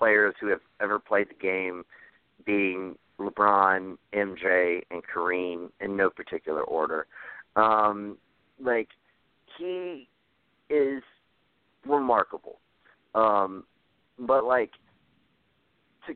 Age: 50-69